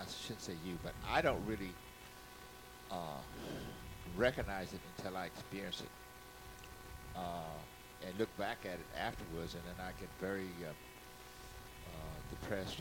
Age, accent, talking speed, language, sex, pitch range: 60-79, American, 140 wpm, English, male, 85-105 Hz